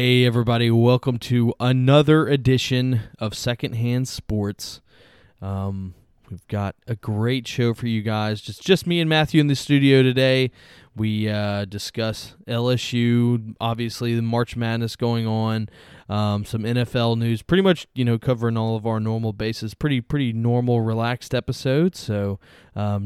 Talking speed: 150 wpm